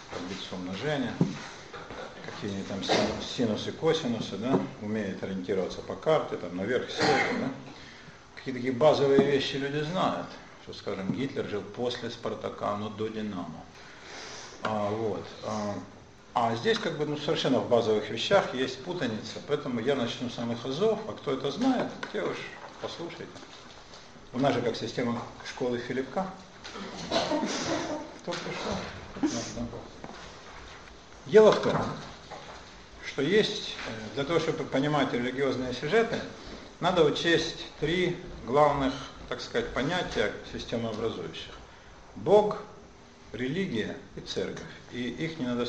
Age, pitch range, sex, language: 50-69, 110-160 Hz, male, Russian